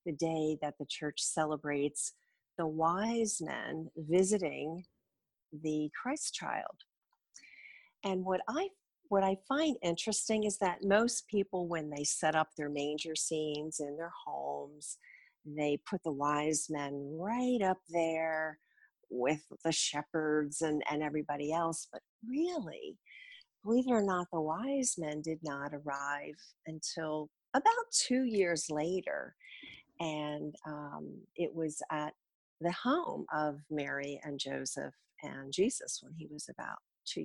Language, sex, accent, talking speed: English, female, American, 135 wpm